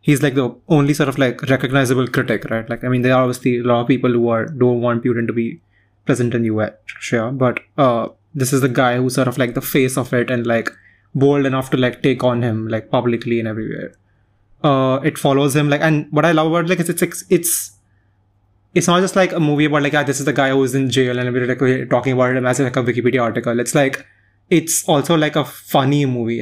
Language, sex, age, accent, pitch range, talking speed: English, male, 20-39, Indian, 120-140 Hz, 250 wpm